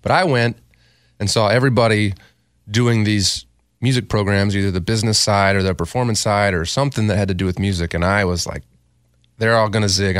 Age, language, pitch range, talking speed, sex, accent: 30-49, English, 85-115 Hz, 205 wpm, male, American